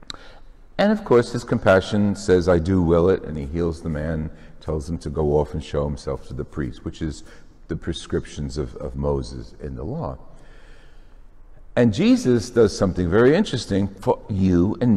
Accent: American